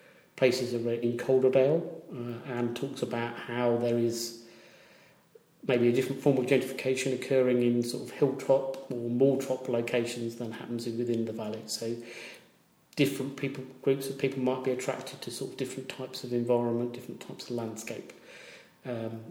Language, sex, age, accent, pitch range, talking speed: English, male, 40-59, British, 120-130 Hz, 160 wpm